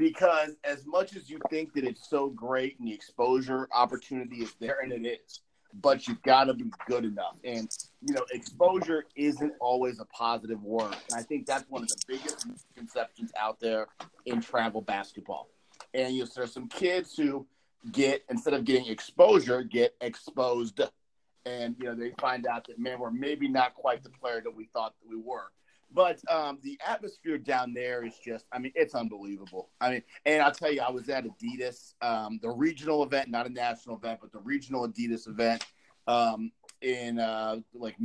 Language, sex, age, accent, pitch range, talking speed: English, male, 40-59, American, 115-140 Hz, 190 wpm